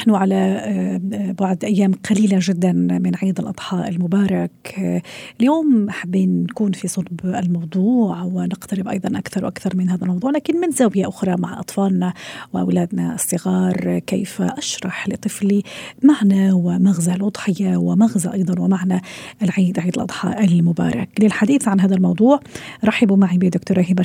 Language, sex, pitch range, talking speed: Arabic, female, 185-215 Hz, 130 wpm